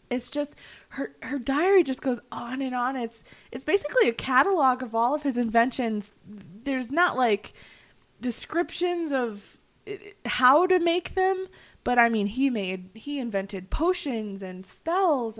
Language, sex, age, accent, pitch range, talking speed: English, female, 20-39, American, 205-265 Hz, 150 wpm